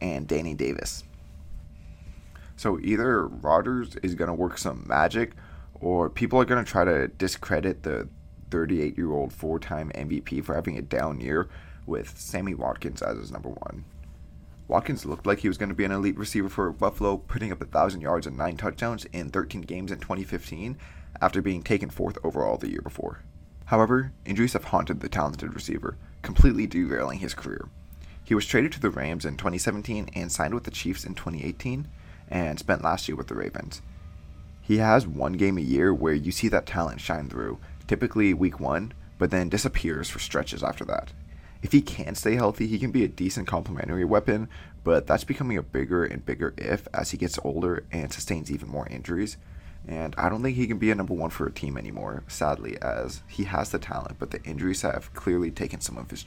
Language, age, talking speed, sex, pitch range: English, 20-39, 195 wpm, male, 75-100 Hz